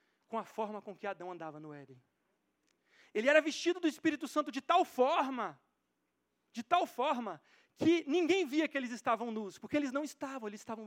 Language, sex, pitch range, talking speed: Portuguese, male, 195-290 Hz, 190 wpm